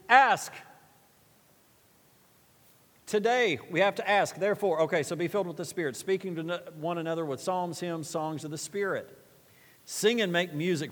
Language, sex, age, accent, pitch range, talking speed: English, male, 40-59, American, 120-165 Hz, 160 wpm